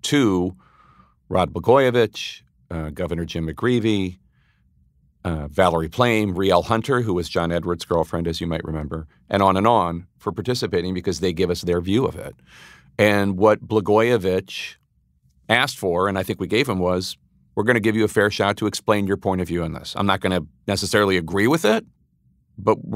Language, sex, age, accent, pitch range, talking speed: English, male, 40-59, American, 85-115 Hz, 185 wpm